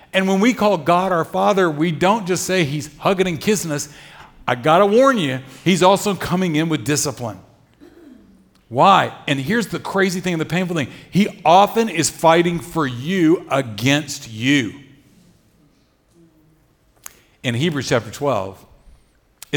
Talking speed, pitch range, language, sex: 150 wpm, 135-185 Hz, English, male